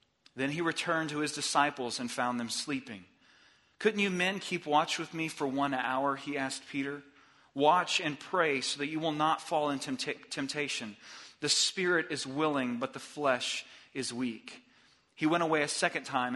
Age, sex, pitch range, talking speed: 40-59, male, 130-165 Hz, 180 wpm